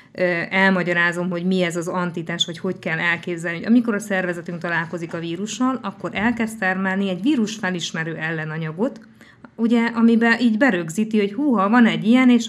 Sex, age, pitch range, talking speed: female, 20-39, 175-220 Hz, 150 wpm